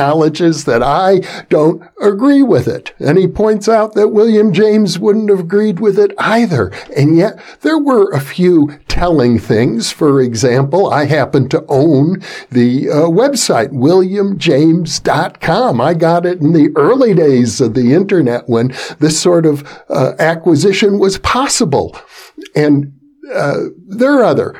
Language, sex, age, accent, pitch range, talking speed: English, male, 60-79, American, 130-200 Hz, 145 wpm